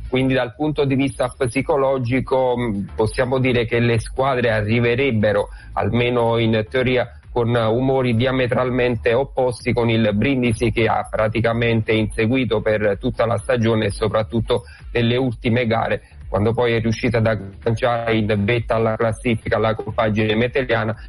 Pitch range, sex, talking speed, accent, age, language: 110-125 Hz, male, 135 wpm, native, 40-59, Italian